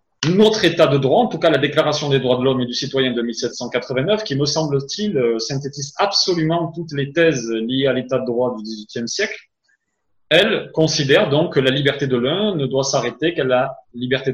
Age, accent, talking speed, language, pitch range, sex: 30-49, French, 200 wpm, French, 130-165 Hz, male